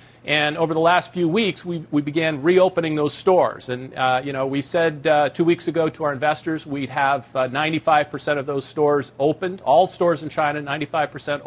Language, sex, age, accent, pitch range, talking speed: English, male, 40-59, American, 145-175 Hz, 210 wpm